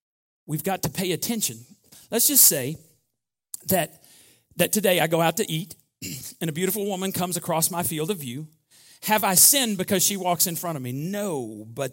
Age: 40-59